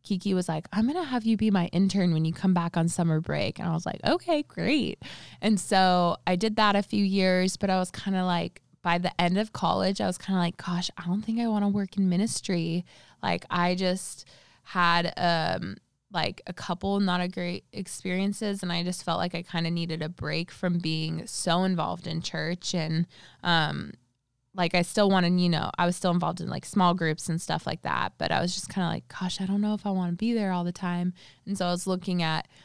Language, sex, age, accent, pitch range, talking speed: English, female, 20-39, American, 165-190 Hz, 245 wpm